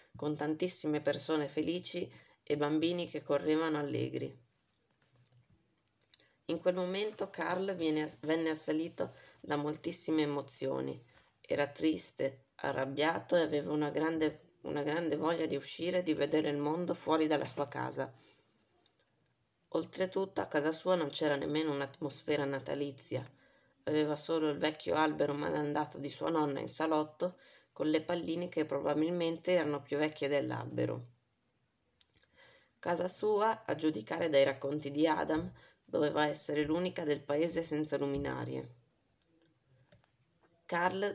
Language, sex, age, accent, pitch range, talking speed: Italian, female, 20-39, native, 140-165 Hz, 125 wpm